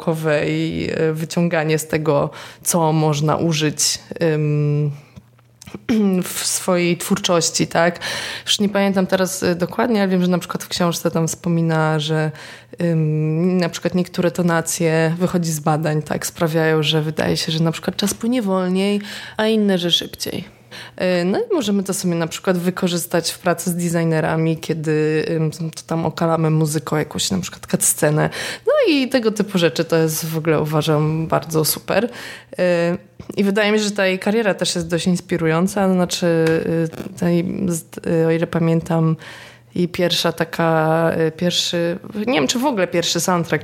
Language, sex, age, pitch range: Polish, female, 20-39, 155-180 Hz